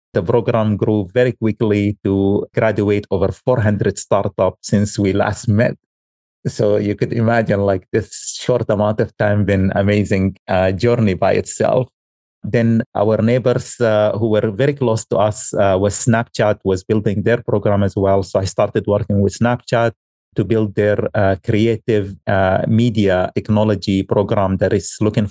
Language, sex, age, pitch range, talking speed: English, male, 30-49, 100-115 Hz, 160 wpm